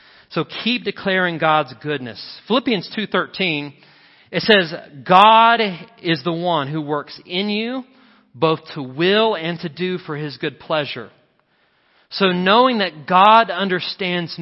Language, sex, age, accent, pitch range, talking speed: English, male, 40-59, American, 135-180 Hz, 135 wpm